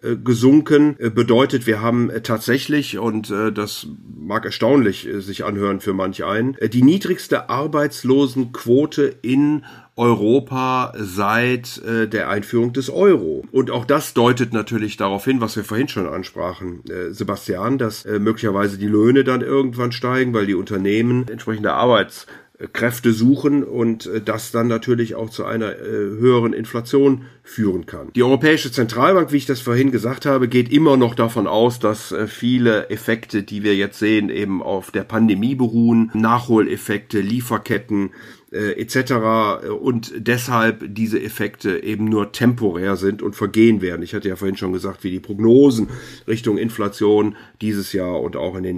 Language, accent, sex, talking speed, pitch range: German, German, male, 150 wpm, 105-125 Hz